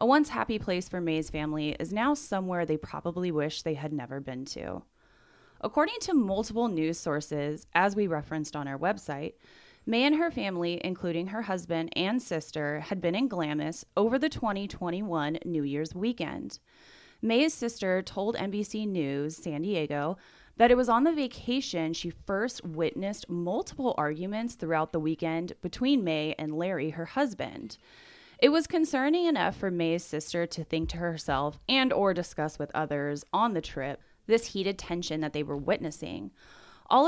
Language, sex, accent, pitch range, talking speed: English, female, American, 155-215 Hz, 165 wpm